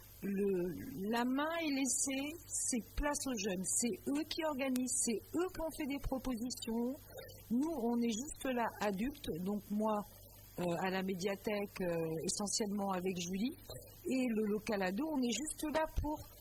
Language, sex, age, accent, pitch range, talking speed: French, female, 50-69, French, 185-250 Hz, 160 wpm